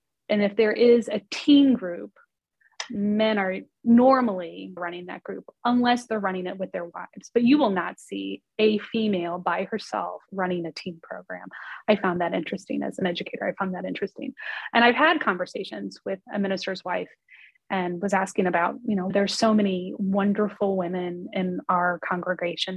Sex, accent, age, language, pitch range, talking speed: female, American, 20-39, English, 180-220 Hz, 175 wpm